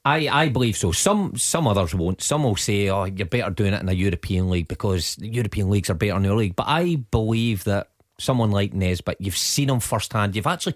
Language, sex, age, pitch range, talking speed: English, male, 30-49, 100-120 Hz, 240 wpm